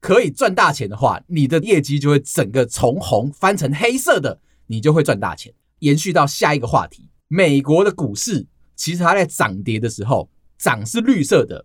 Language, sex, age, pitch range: Chinese, male, 30-49, 115-160 Hz